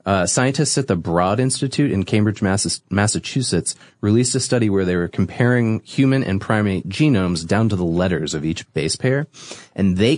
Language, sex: English, male